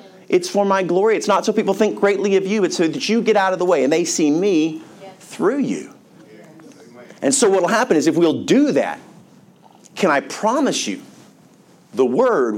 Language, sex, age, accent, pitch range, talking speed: English, male, 40-59, American, 135-200 Hz, 205 wpm